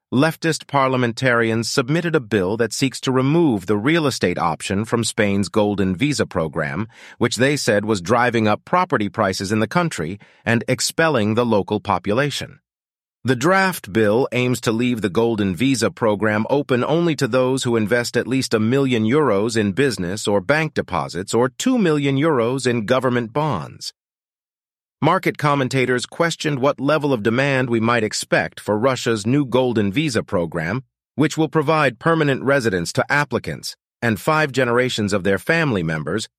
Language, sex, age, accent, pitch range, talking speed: English, male, 40-59, American, 110-145 Hz, 160 wpm